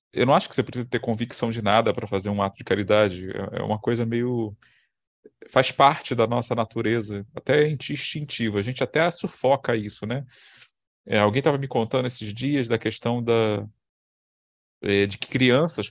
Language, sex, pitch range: Portuguese, male, 105-135 Hz